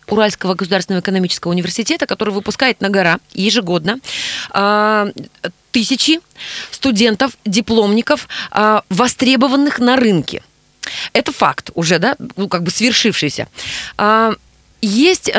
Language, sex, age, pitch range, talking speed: Russian, female, 20-39, 195-245 Hz, 95 wpm